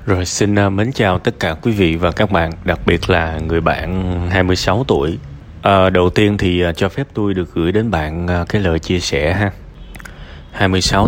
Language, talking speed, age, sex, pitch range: Vietnamese, 185 wpm, 20-39, male, 85-110 Hz